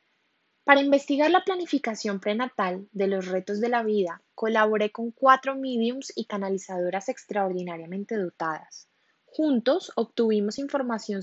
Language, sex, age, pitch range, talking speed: Spanish, female, 10-29, 195-255 Hz, 120 wpm